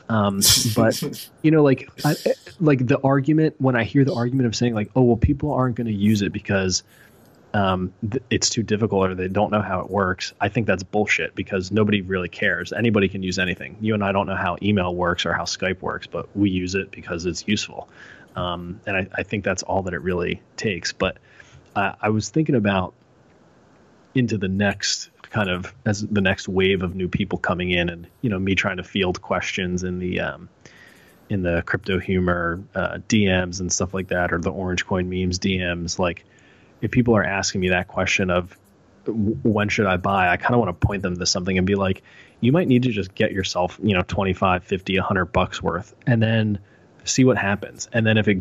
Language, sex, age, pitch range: English, male, 20-39, 90-110 Hz